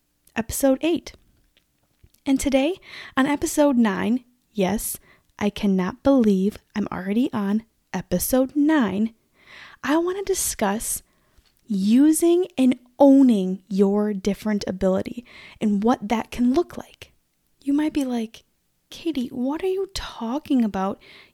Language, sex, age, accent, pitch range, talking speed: English, female, 10-29, American, 205-270 Hz, 120 wpm